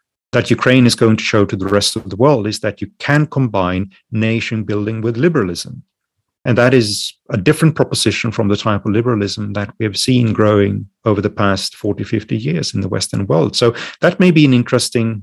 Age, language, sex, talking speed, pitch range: 40-59, German, male, 210 wpm, 100-120 Hz